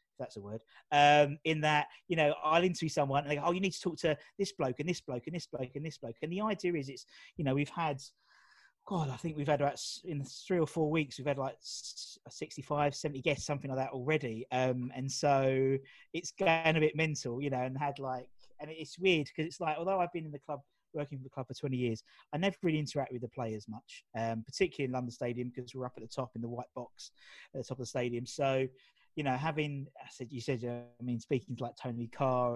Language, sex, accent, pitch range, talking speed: English, male, British, 125-150 Hz, 255 wpm